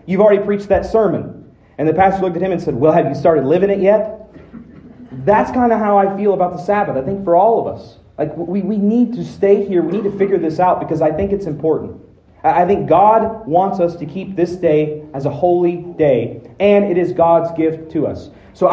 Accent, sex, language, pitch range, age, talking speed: American, male, English, 160-200 Hz, 30-49, 235 wpm